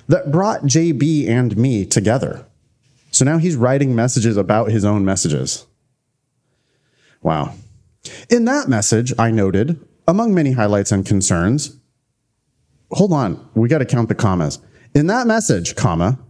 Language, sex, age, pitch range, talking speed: English, male, 30-49, 110-155 Hz, 140 wpm